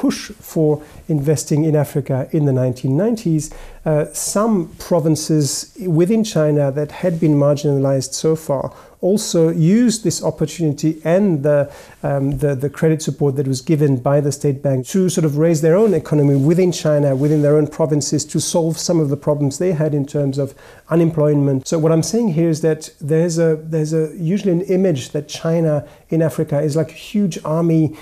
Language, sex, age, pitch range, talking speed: English, male, 40-59, 145-165 Hz, 180 wpm